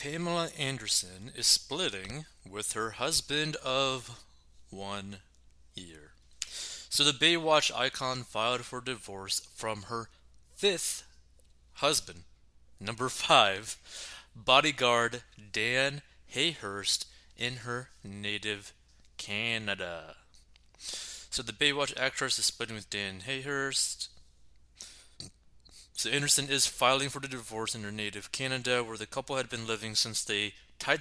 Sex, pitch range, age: male, 100-130 Hz, 20-39